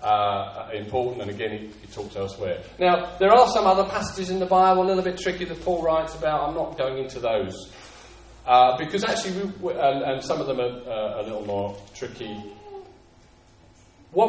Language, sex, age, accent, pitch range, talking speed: English, male, 30-49, British, 105-170 Hz, 195 wpm